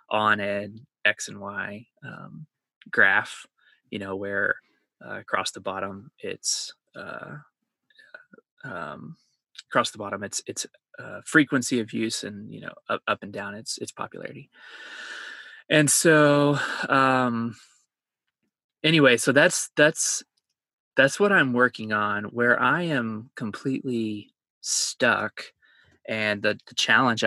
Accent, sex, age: American, male, 20-39